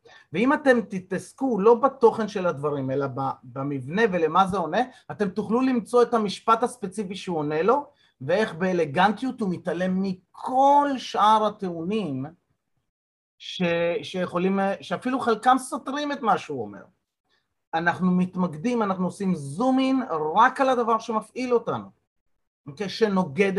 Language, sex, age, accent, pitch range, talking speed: Hebrew, male, 30-49, native, 155-230 Hz, 120 wpm